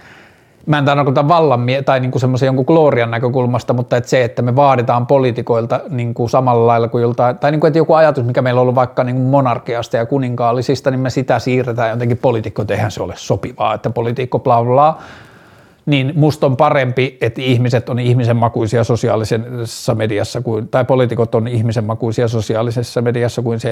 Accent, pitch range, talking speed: native, 120-140 Hz, 185 wpm